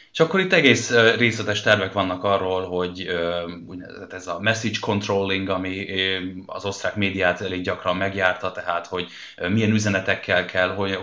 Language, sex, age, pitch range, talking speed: Hungarian, male, 20-39, 90-105 Hz, 140 wpm